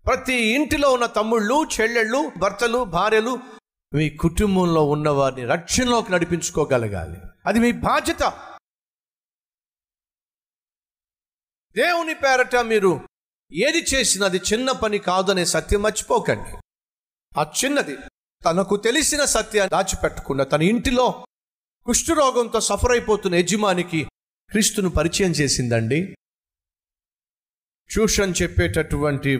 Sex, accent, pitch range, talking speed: male, native, 145-220 Hz, 85 wpm